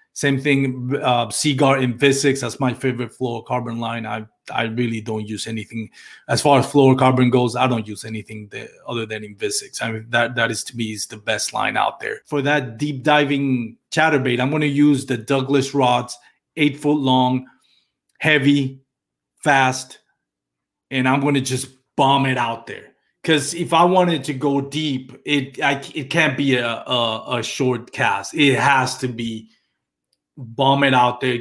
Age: 30-49